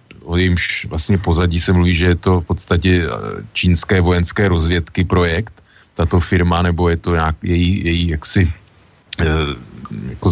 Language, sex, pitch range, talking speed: Slovak, male, 85-95 Hz, 145 wpm